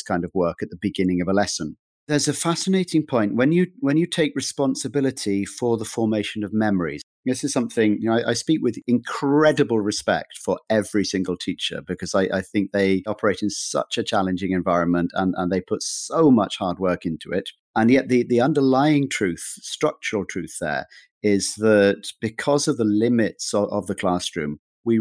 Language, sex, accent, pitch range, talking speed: English, male, British, 95-120 Hz, 190 wpm